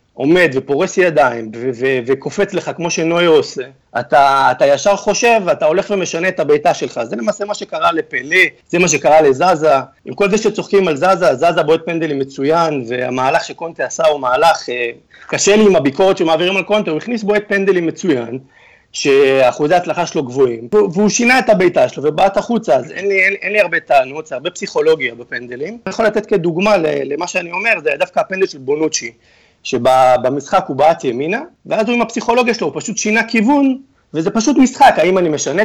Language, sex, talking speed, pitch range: Hebrew, male, 175 wpm, 150-210 Hz